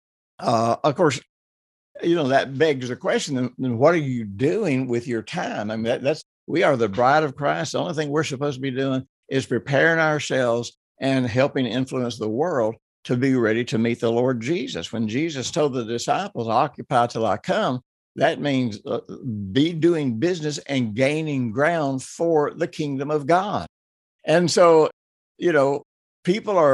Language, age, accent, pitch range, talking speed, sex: English, 60-79, American, 120-150 Hz, 180 wpm, male